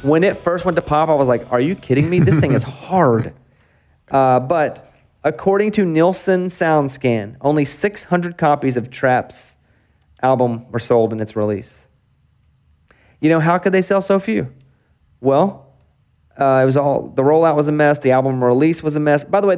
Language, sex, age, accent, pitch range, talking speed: English, male, 30-49, American, 120-165 Hz, 185 wpm